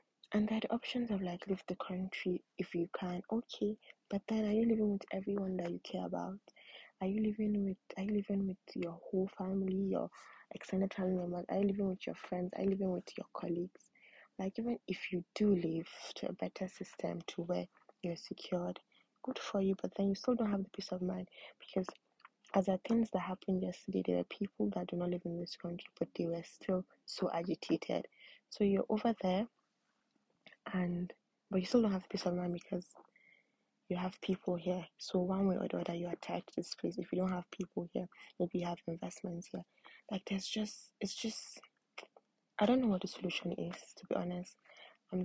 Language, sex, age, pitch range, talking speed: English, female, 20-39, 180-205 Hz, 205 wpm